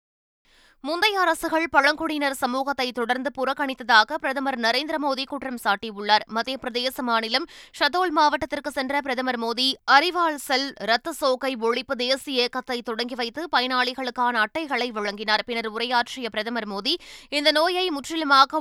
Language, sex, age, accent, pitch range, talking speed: Tamil, female, 20-39, native, 240-290 Hz, 115 wpm